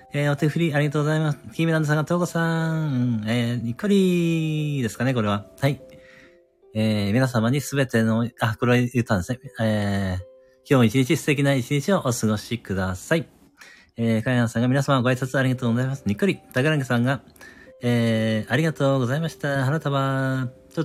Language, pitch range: Japanese, 115-150 Hz